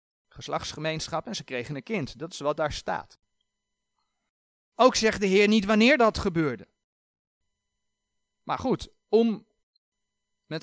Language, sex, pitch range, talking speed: Dutch, male, 140-230 Hz, 130 wpm